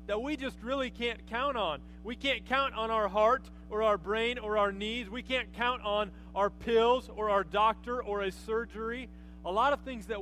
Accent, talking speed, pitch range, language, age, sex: American, 210 wpm, 180-230 Hz, English, 30-49, male